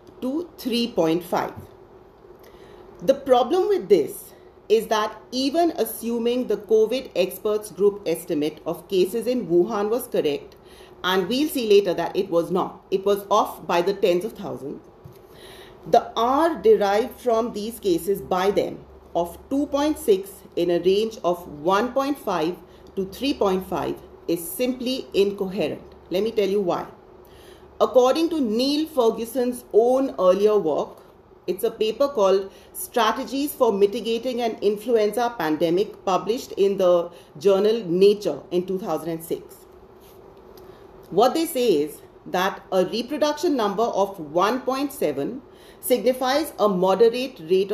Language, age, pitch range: English, 40-59, 195-290 Hz